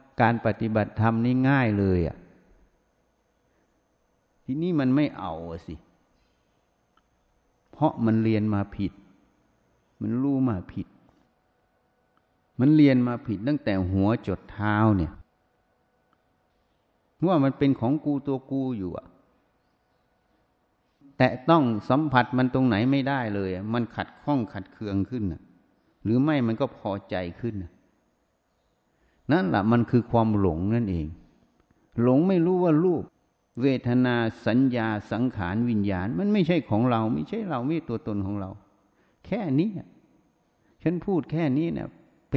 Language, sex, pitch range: Thai, male, 100-135 Hz